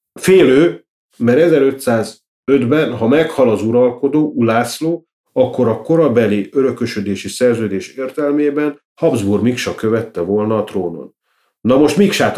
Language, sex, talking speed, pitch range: Hungarian, male, 110 wpm, 105-145 Hz